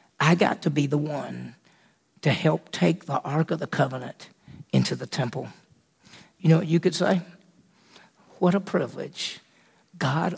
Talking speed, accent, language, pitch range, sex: 155 wpm, American, English, 170-210 Hz, male